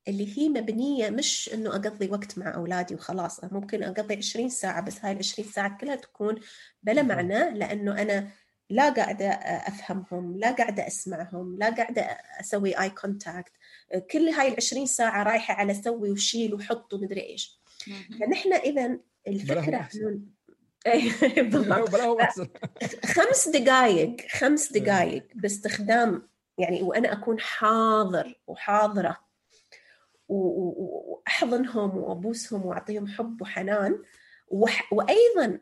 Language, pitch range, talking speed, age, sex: Arabic, 195-235 Hz, 115 wpm, 30-49, female